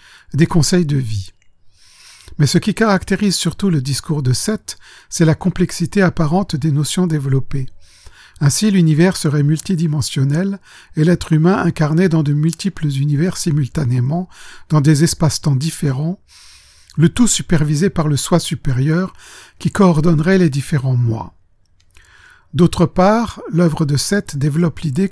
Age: 50-69